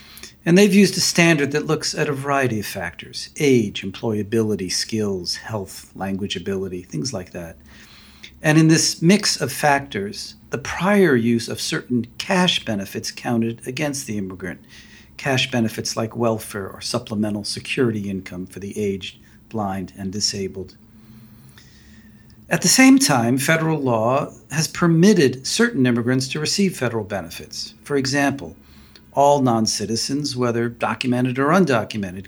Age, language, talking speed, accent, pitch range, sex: 50-69, English, 140 wpm, American, 105-135 Hz, male